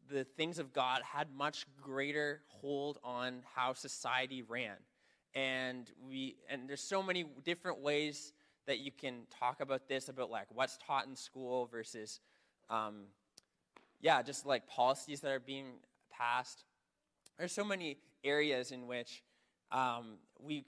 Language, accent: English, American